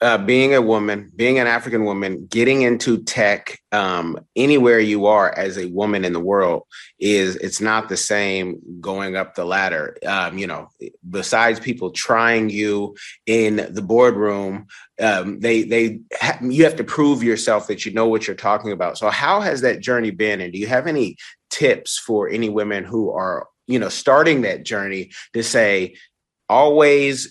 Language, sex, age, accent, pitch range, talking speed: English, male, 30-49, American, 105-135 Hz, 180 wpm